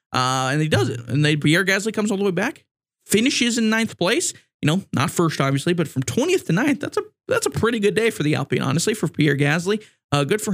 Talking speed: 255 wpm